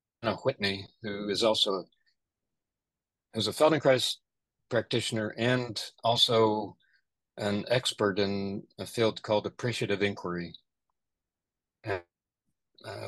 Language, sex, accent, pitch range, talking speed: English, male, American, 100-120 Hz, 85 wpm